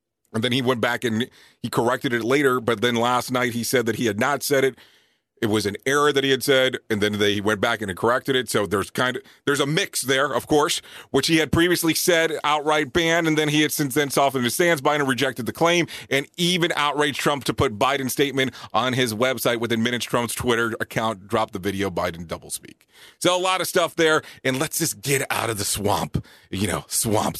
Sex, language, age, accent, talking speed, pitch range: male, English, 30-49, American, 230 wpm, 105-140 Hz